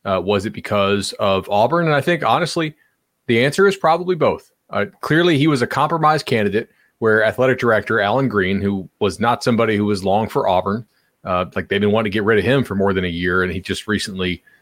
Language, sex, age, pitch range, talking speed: English, male, 30-49, 105-135 Hz, 225 wpm